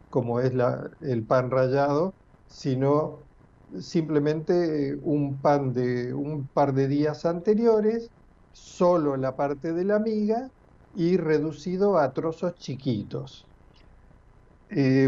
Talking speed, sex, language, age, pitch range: 110 wpm, male, Spanish, 50-69, 130-175 Hz